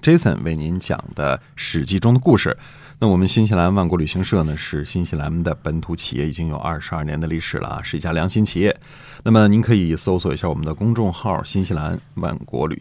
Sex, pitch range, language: male, 95-120 Hz, Chinese